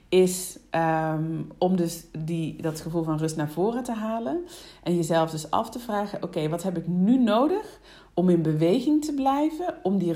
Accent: Dutch